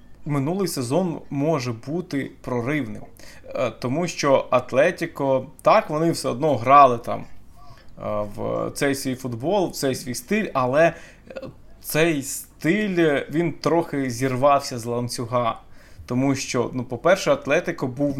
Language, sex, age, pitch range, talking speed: Ukrainian, male, 20-39, 125-170 Hz, 120 wpm